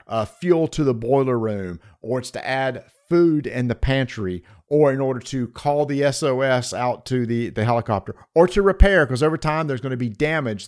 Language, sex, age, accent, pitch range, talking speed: English, male, 50-69, American, 125-175 Hz, 210 wpm